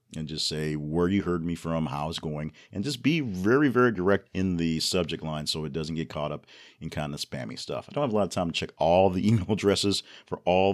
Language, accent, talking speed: English, American, 265 wpm